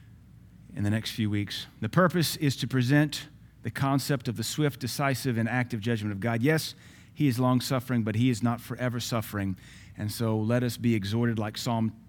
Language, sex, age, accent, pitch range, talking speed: English, male, 40-59, American, 115-140 Hz, 195 wpm